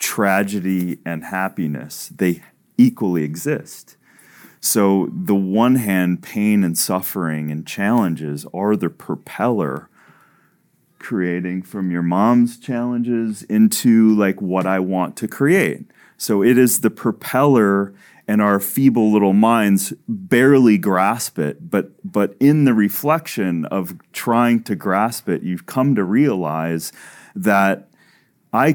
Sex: male